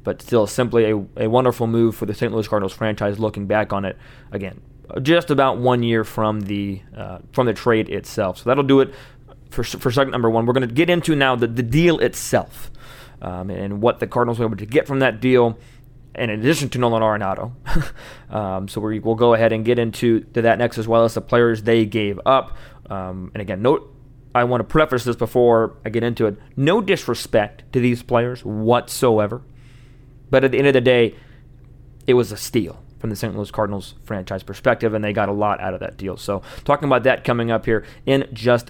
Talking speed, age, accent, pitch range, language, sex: 220 wpm, 20-39, American, 115-135 Hz, English, male